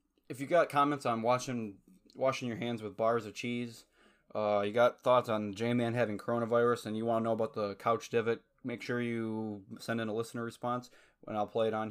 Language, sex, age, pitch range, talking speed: English, male, 20-39, 105-120 Hz, 210 wpm